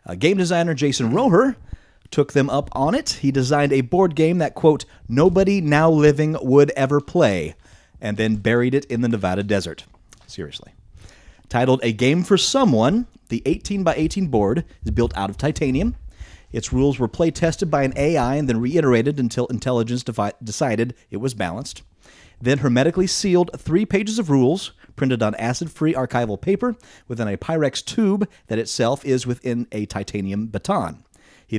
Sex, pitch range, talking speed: male, 110-160 Hz, 170 wpm